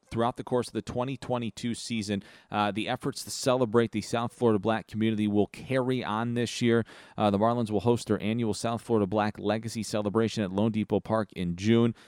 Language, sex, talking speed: English, male, 200 wpm